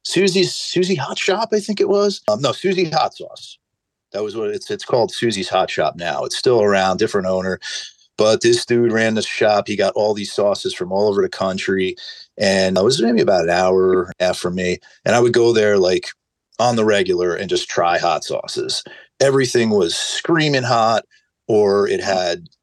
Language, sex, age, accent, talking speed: English, male, 40-59, American, 195 wpm